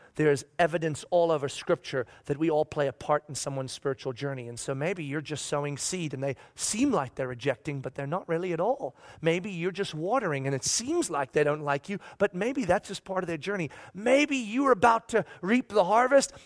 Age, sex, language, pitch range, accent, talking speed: 40-59, male, English, 135-195 Hz, American, 225 wpm